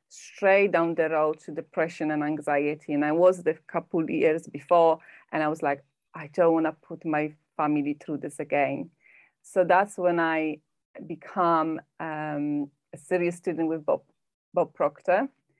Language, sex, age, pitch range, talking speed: German, female, 30-49, 155-185 Hz, 165 wpm